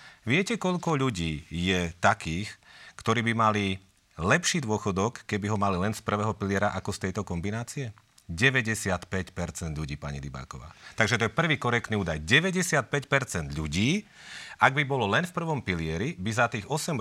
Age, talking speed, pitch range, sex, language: 40-59, 155 wpm, 90-125 Hz, male, Slovak